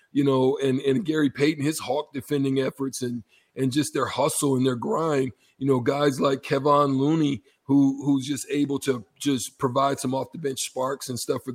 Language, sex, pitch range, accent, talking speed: English, male, 135-155 Hz, American, 205 wpm